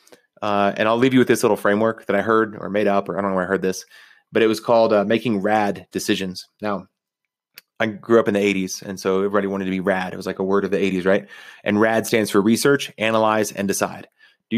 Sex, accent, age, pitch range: male, American, 30-49, 100-115 Hz